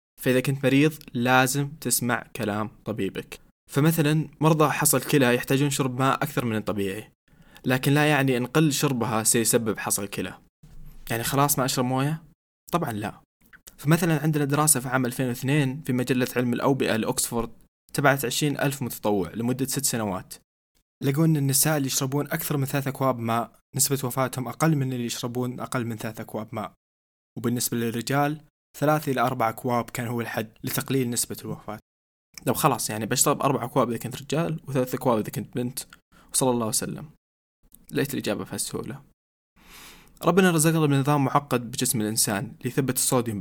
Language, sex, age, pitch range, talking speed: Arabic, male, 20-39, 115-145 Hz, 155 wpm